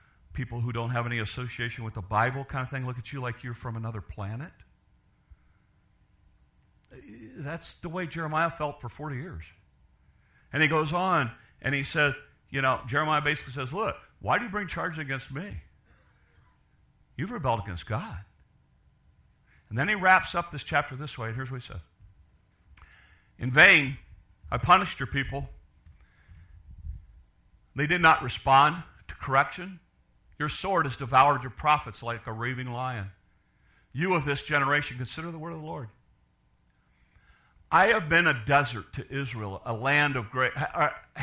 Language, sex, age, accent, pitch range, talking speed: English, male, 50-69, American, 105-150 Hz, 160 wpm